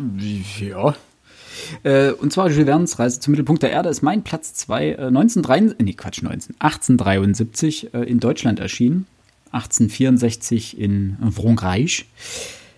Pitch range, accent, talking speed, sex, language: 115-145 Hz, German, 125 wpm, male, German